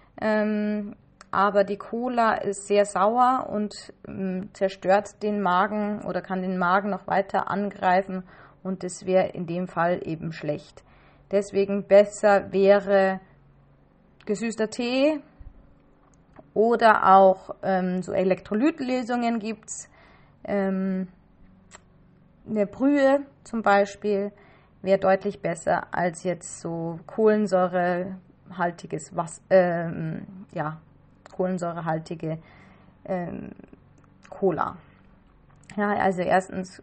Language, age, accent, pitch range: German, 30-49, German, 180-205 Hz